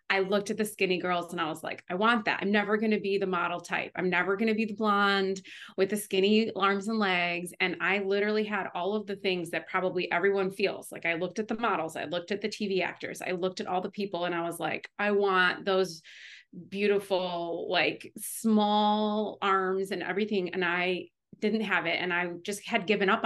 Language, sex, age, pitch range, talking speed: English, female, 30-49, 175-205 Hz, 225 wpm